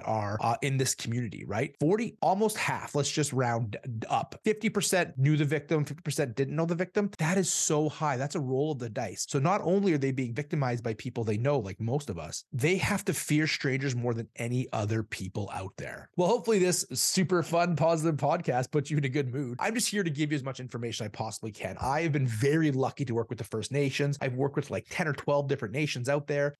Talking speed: 240 wpm